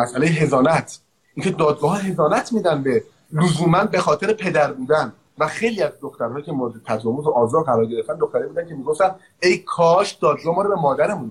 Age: 30-49